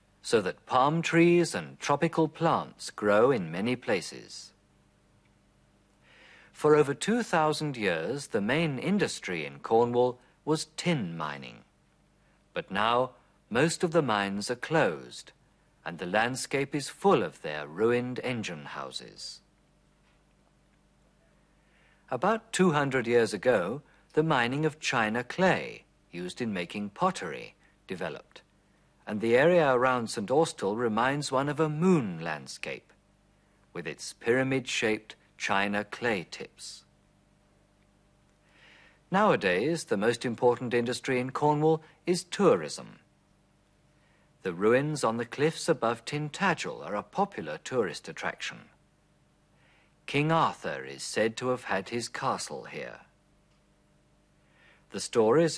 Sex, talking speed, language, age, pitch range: male, 115 wpm, German, 50-69, 115-160 Hz